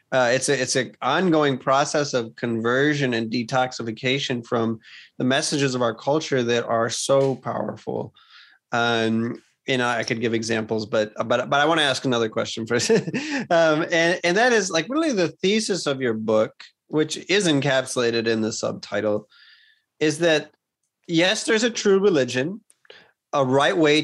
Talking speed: 165 wpm